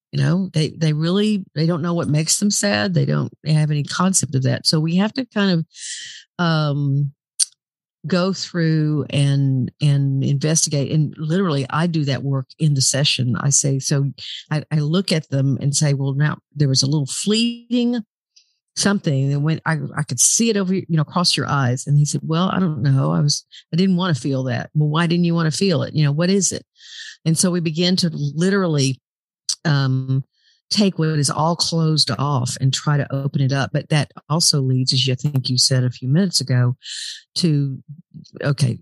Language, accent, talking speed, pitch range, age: English, American, 205 wpm, 135-165 Hz, 50-69